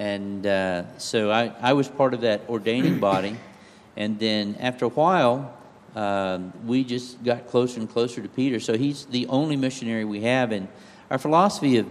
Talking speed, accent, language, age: 180 wpm, American, English, 50-69